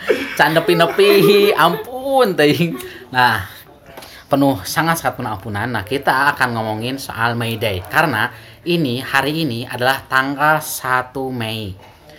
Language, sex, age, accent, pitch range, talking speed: Indonesian, male, 20-39, native, 105-135 Hz, 115 wpm